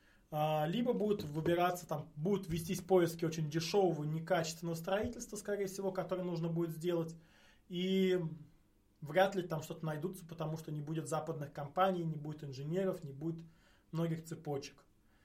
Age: 20-39